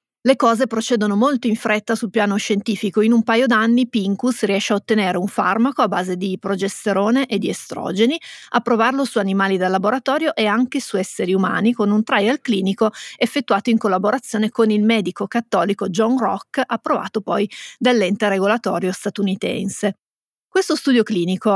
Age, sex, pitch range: 30-49, female, 195-230 Hz